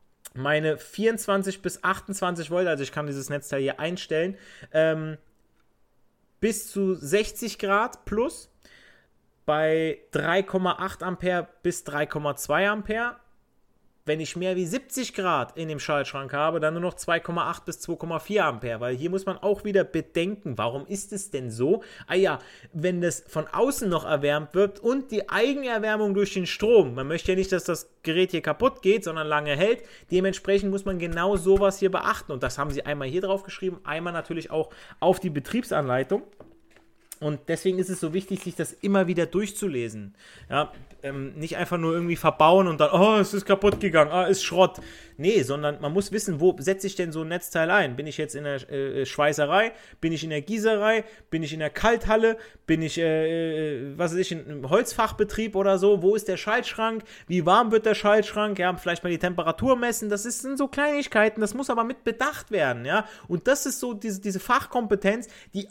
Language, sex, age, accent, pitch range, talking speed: German, male, 30-49, German, 155-205 Hz, 185 wpm